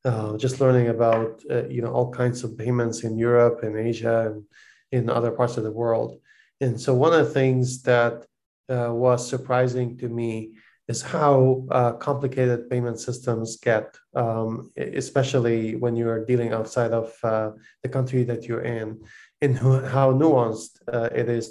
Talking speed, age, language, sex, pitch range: 170 wpm, 20-39, English, male, 115-130 Hz